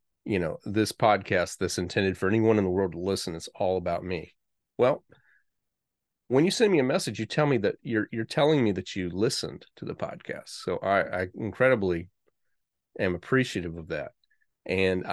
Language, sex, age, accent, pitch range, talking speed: English, male, 30-49, American, 95-120 Hz, 185 wpm